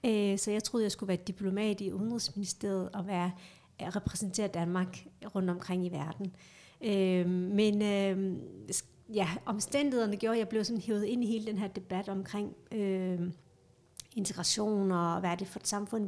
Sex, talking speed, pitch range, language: female, 155 wpm, 185-215 Hz, Danish